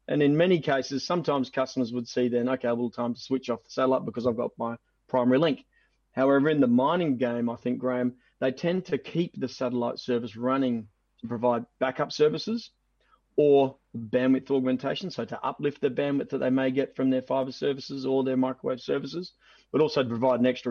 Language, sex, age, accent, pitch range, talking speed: English, male, 30-49, Australian, 120-140 Hz, 205 wpm